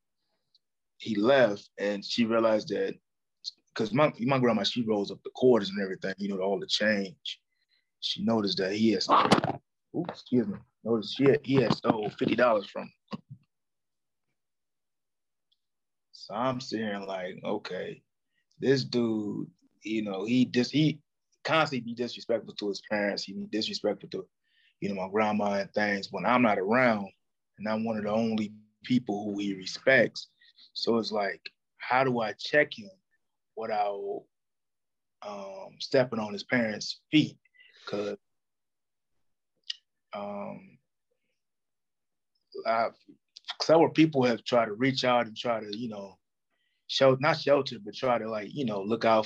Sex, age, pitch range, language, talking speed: male, 20-39, 100-125 Hz, English, 150 wpm